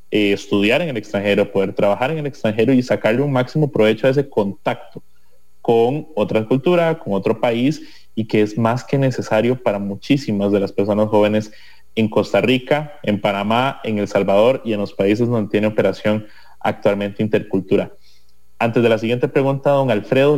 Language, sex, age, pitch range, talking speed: English, male, 30-49, 105-135 Hz, 175 wpm